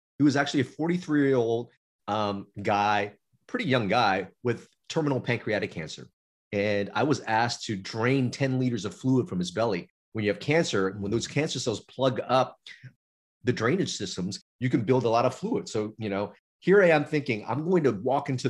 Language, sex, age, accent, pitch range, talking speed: English, male, 30-49, American, 100-145 Hz, 200 wpm